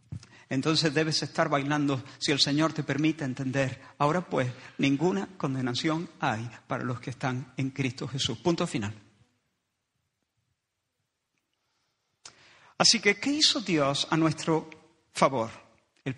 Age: 50-69